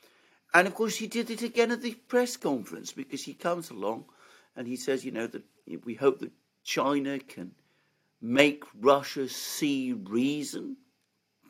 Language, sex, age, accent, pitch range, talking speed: English, male, 60-79, British, 115-160 Hz, 155 wpm